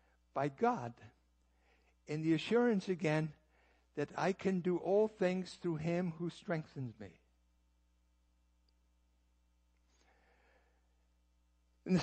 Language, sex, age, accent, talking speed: English, male, 60-79, American, 95 wpm